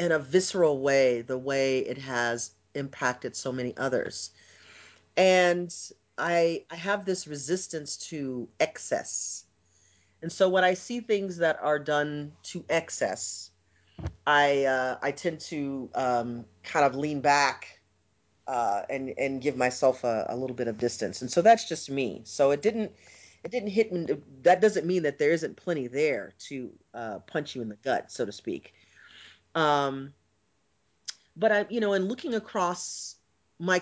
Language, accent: English, American